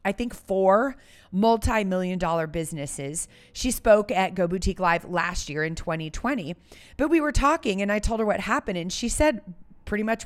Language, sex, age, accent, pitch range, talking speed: English, female, 30-49, American, 195-275 Hz, 180 wpm